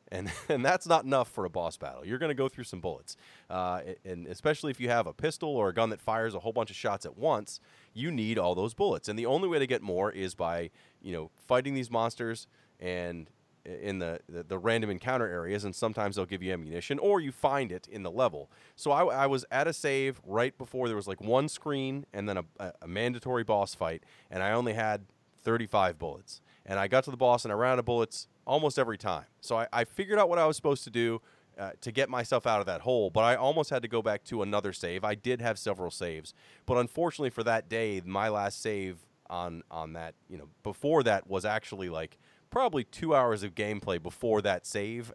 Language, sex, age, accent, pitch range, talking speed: English, male, 30-49, American, 95-125 Hz, 235 wpm